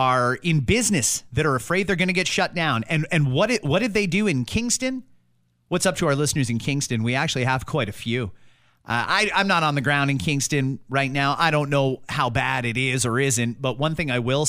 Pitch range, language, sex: 115-175 Hz, English, male